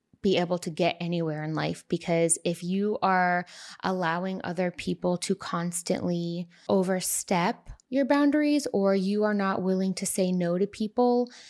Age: 20-39